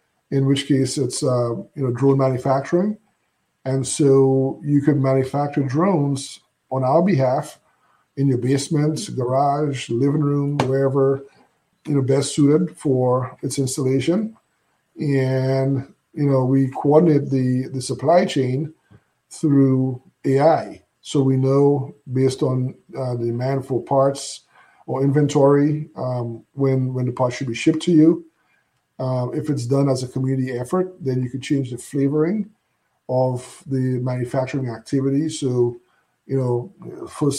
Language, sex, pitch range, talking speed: English, male, 130-145 Hz, 140 wpm